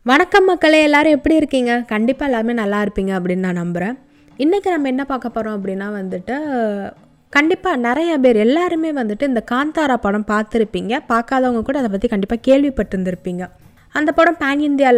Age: 20-39